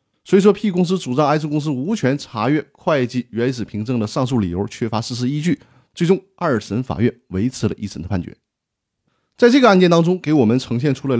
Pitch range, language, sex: 115-170 Hz, Chinese, male